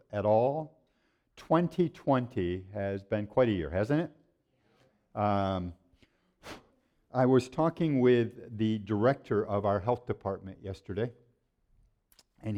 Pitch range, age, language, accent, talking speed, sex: 110-160 Hz, 50-69, English, American, 110 wpm, male